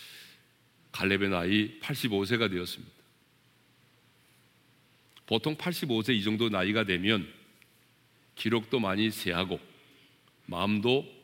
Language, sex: Korean, male